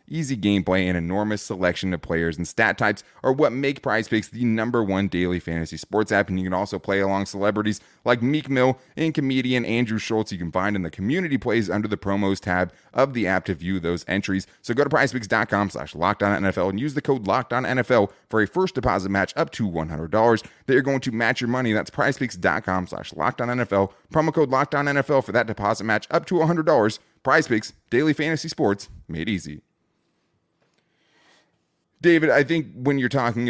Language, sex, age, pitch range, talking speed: English, male, 20-39, 100-130 Hz, 205 wpm